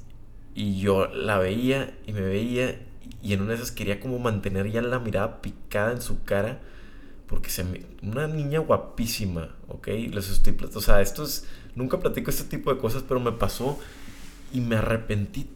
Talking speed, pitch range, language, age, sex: 180 wpm, 90-115 Hz, Spanish, 20-39, male